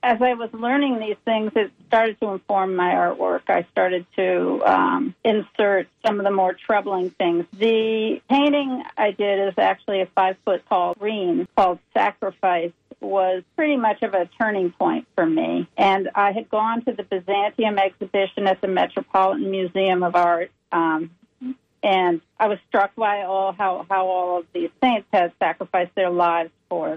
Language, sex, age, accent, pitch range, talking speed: English, female, 50-69, American, 185-225 Hz, 165 wpm